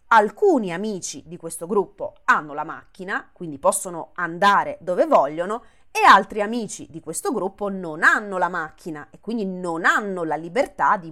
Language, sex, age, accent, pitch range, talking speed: Italian, female, 20-39, native, 170-260 Hz, 160 wpm